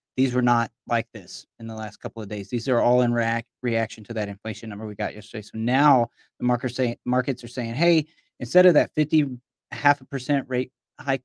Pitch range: 110-130 Hz